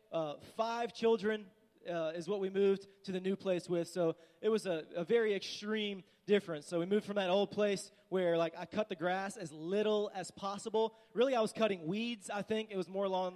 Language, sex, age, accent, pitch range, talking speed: English, male, 20-39, American, 185-220 Hz, 220 wpm